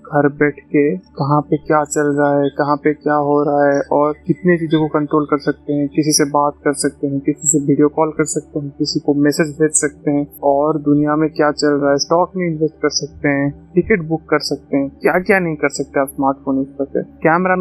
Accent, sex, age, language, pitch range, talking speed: native, male, 30-49, Hindi, 145-165 Hz, 240 wpm